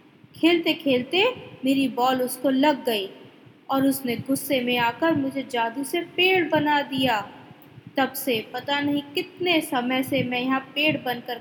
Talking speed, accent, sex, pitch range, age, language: 145 wpm, native, female, 245-335 Hz, 20-39, Hindi